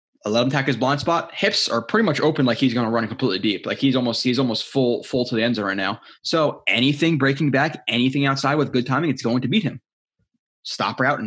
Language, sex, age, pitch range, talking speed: English, male, 20-39, 115-140 Hz, 250 wpm